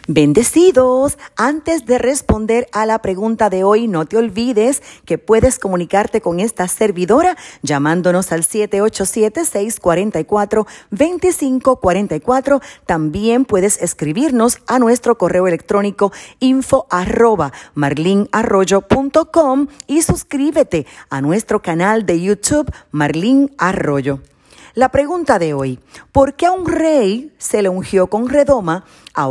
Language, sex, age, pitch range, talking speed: Spanish, female, 40-59, 175-250 Hz, 115 wpm